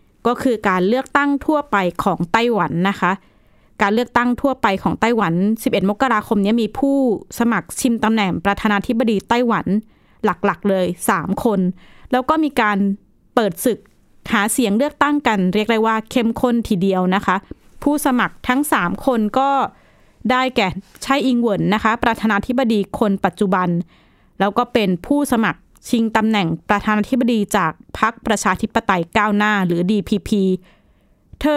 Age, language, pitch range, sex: 20-39, Thai, 200-245 Hz, female